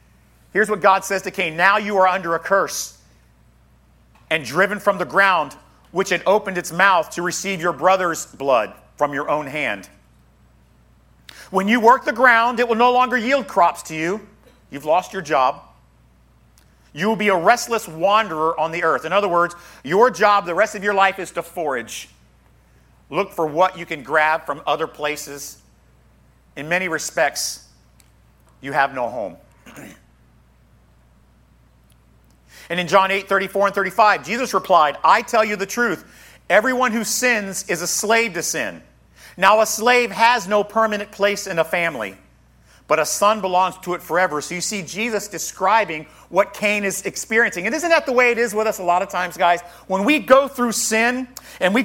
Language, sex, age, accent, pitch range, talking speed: English, male, 50-69, American, 160-215 Hz, 180 wpm